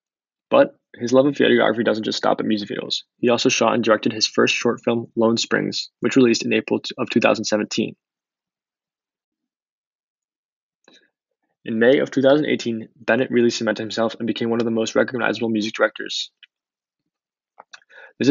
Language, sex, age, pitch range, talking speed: English, male, 20-39, 110-120 Hz, 150 wpm